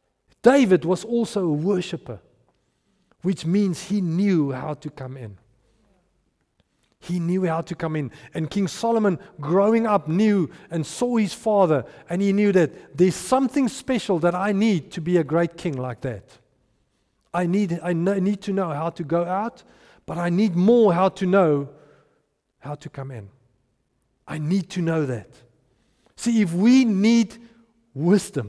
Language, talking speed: English, 160 wpm